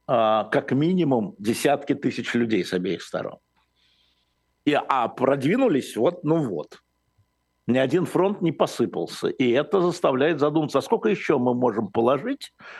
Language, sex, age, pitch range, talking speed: Russian, male, 60-79, 110-140 Hz, 135 wpm